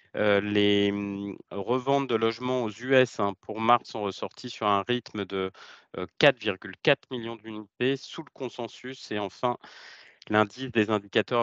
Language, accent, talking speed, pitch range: French, French, 130 wpm, 105-130 Hz